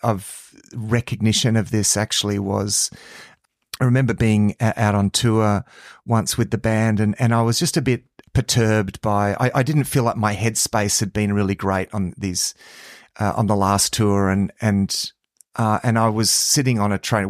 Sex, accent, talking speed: male, Australian, 185 wpm